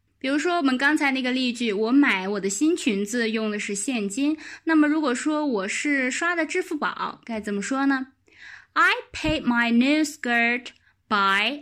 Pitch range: 195-305 Hz